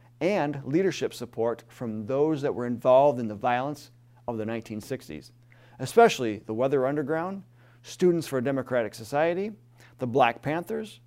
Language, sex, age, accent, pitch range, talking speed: English, male, 40-59, American, 120-145 Hz, 140 wpm